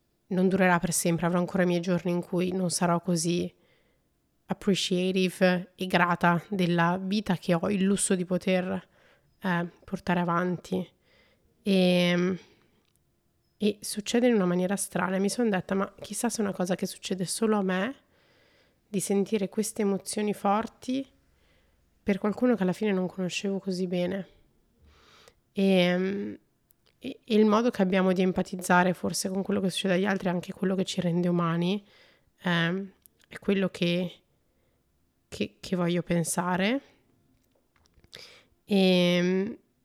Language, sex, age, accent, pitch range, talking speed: Italian, female, 20-39, native, 180-205 Hz, 140 wpm